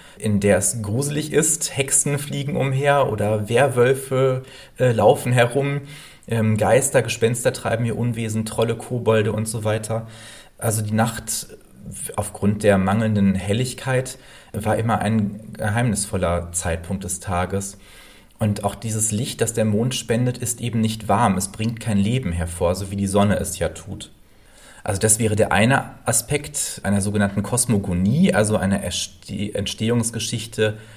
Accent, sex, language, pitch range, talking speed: German, male, German, 100-125 Hz, 145 wpm